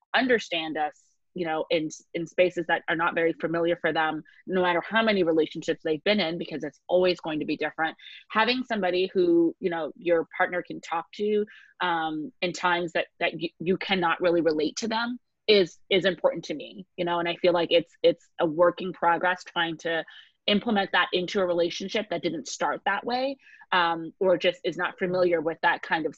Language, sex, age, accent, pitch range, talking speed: English, female, 30-49, American, 165-200 Hz, 200 wpm